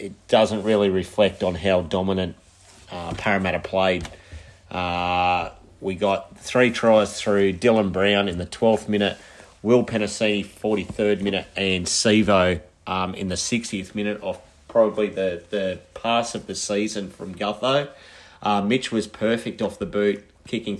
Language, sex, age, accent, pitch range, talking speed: English, male, 30-49, Australian, 95-110 Hz, 145 wpm